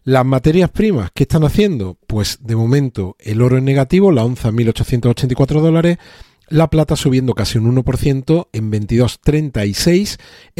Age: 40-59